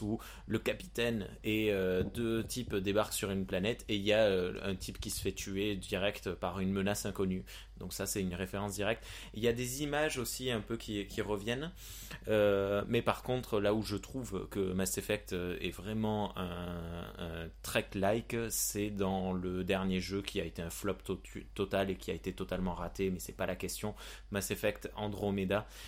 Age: 20-39